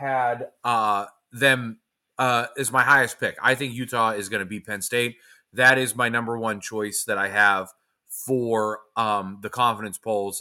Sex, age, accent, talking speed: male, 30-49, American, 180 wpm